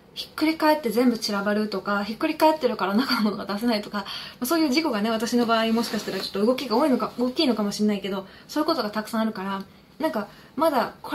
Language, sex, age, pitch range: Japanese, female, 20-39, 205-280 Hz